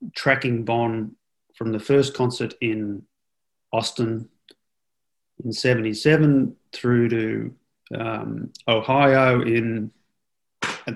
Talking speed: 95 wpm